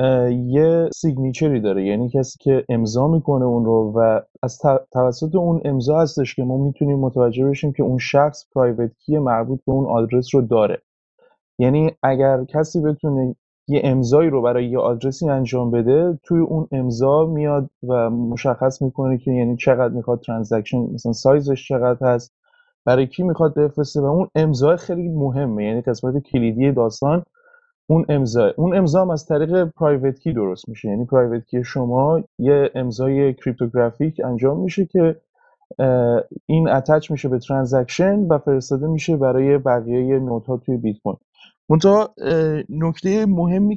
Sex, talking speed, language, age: male, 145 wpm, Persian, 30-49